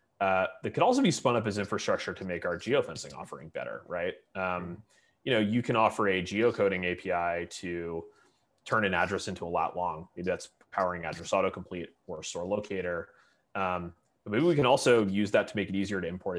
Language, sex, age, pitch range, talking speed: English, male, 30-49, 85-100 Hz, 205 wpm